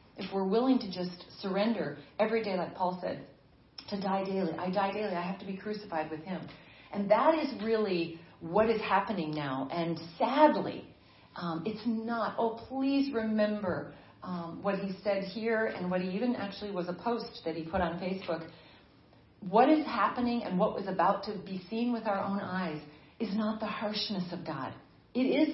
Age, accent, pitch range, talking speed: 40-59, American, 180-230 Hz, 190 wpm